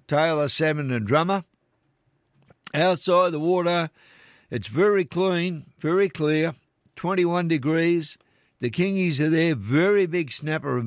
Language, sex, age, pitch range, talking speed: English, male, 60-79, 125-165 Hz, 120 wpm